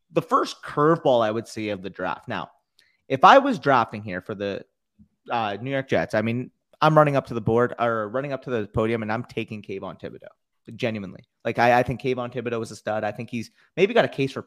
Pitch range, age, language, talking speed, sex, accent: 115-140 Hz, 30-49, English, 240 wpm, male, American